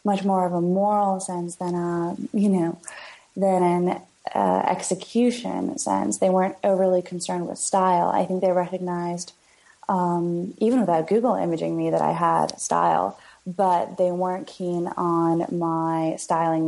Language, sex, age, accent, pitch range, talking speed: English, female, 20-39, American, 165-185 Hz, 150 wpm